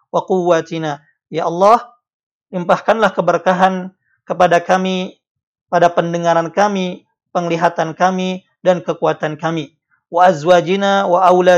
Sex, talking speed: male, 90 wpm